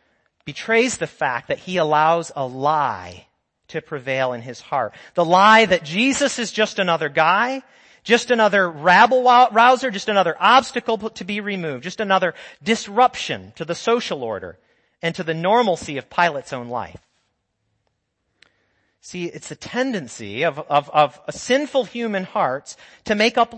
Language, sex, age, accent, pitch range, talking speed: English, male, 40-59, American, 170-235 Hz, 150 wpm